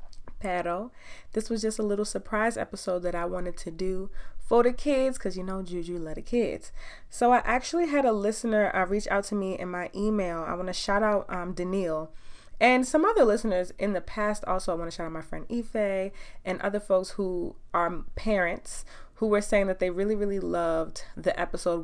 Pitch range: 165-200 Hz